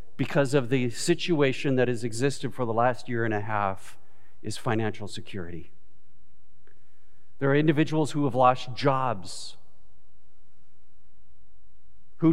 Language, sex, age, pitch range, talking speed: English, male, 50-69, 110-140 Hz, 120 wpm